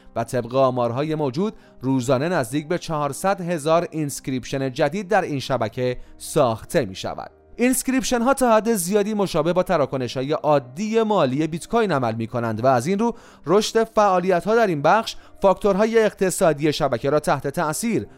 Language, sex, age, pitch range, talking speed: Persian, male, 30-49, 135-200 Hz, 155 wpm